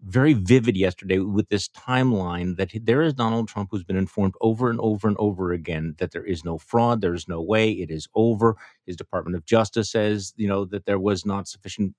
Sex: male